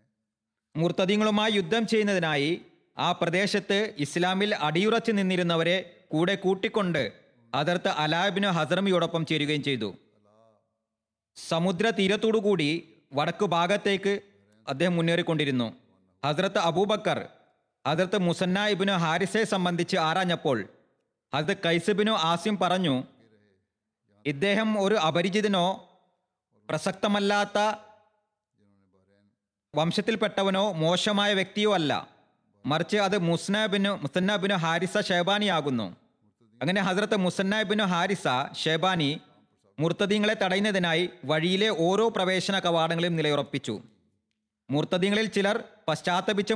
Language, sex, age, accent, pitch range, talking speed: Malayalam, male, 30-49, native, 145-200 Hz, 80 wpm